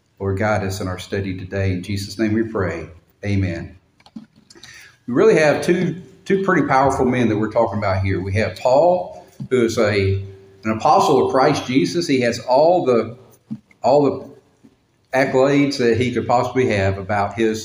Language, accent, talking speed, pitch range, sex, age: English, American, 175 wpm, 110-135 Hz, male, 50-69